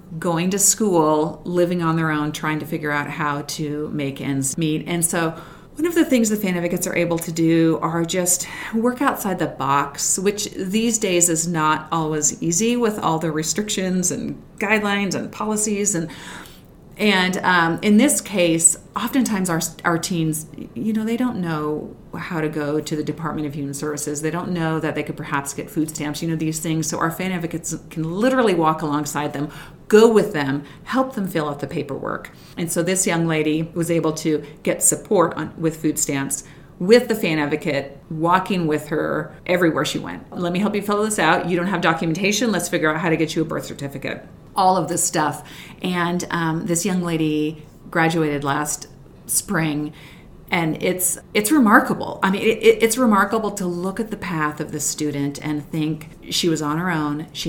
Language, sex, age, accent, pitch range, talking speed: English, female, 40-59, American, 155-185 Hz, 195 wpm